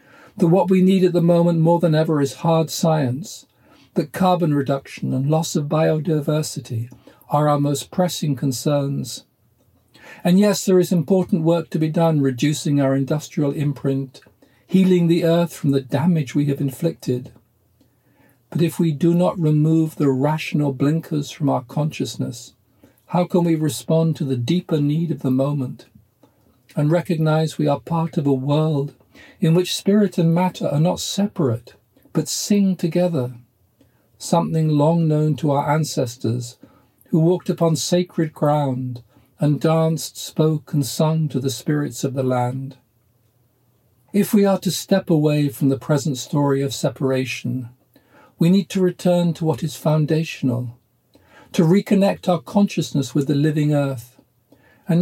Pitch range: 135-170 Hz